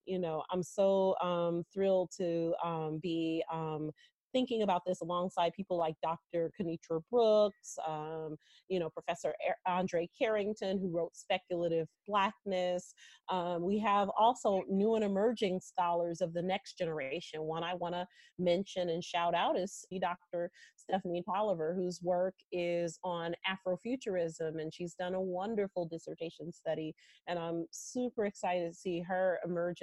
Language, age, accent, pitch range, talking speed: English, 30-49, American, 170-200 Hz, 150 wpm